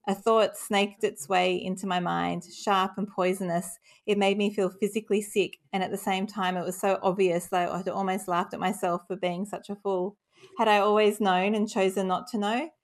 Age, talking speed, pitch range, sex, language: 30-49, 220 wpm, 180-205 Hz, female, English